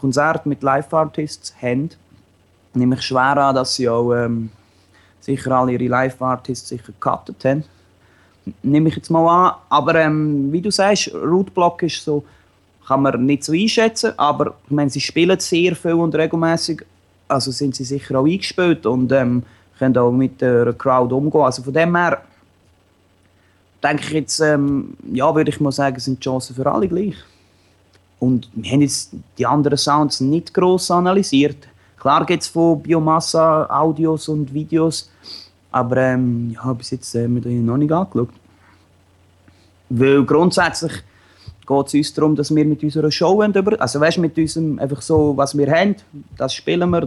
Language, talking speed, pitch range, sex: English, 170 wpm, 120-155 Hz, male